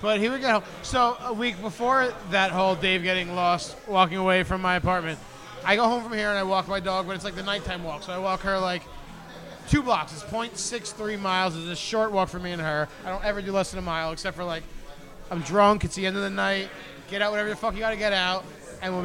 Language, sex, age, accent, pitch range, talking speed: English, male, 20-39, American, 180-215 Hz, 260 wpm